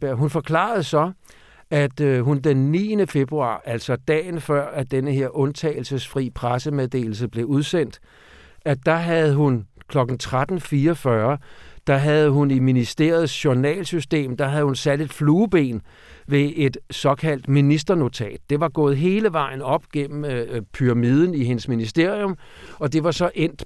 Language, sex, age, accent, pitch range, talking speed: Danish, male, 60-79, native, 130-165 Hz, 140 wpm